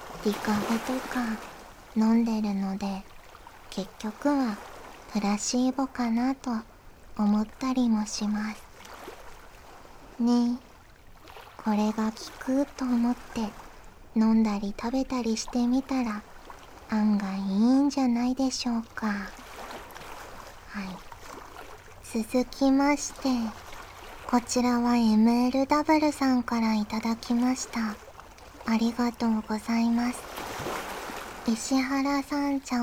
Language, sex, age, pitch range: Japanese, male, 40-59, 220-260 Hz